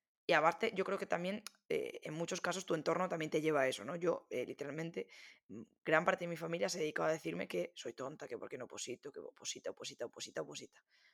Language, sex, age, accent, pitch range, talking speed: Spanish, female, 20-39, Spanish, 175-225 Hz, 235 wpm